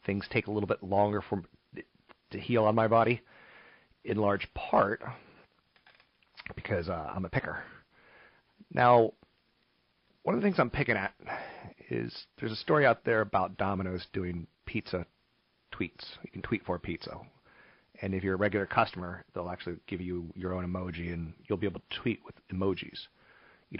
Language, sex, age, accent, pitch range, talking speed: English, male, 40-59, American, 90-120 Hz, 165 wpm